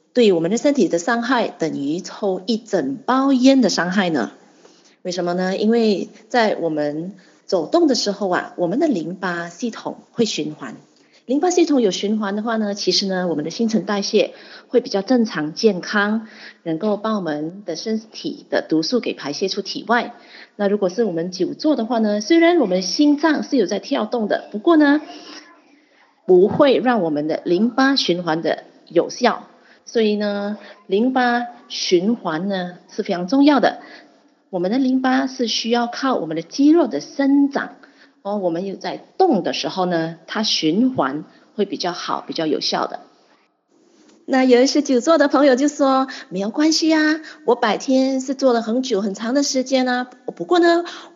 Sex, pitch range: female, 195-280 Hz